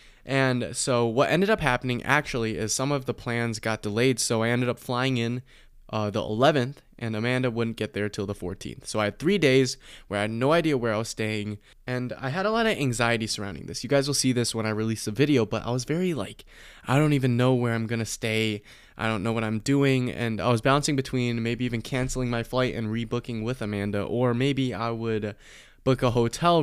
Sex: male